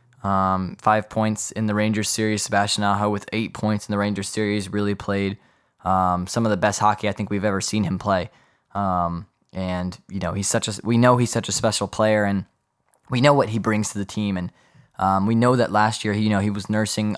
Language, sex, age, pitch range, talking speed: English, male, 10-29, 100-115 Hz, 230 wpm